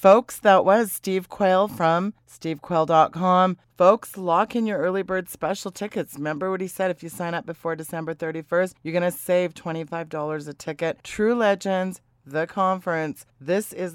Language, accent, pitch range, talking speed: English, American, 150-185 Hz, 170 wpm